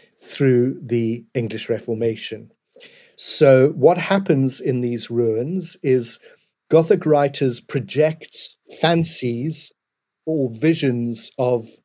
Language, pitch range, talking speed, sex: English, 125-155 Hz, 90 wpm, male